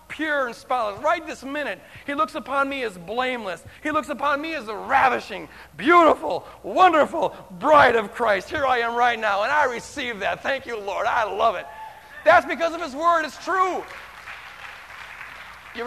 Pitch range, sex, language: 175-270 Hz, male, English